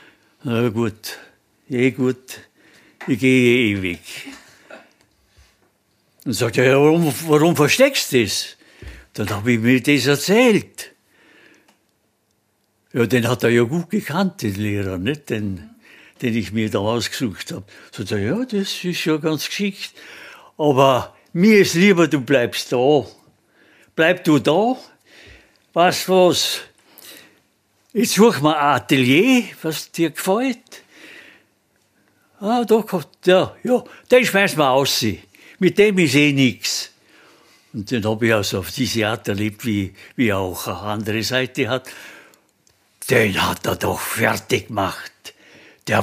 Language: German